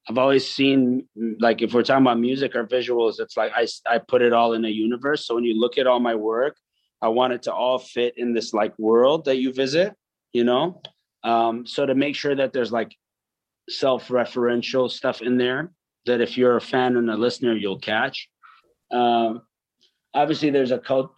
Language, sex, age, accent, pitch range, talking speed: English, male, 30-49, American, 110-130 Hz, 200 wpm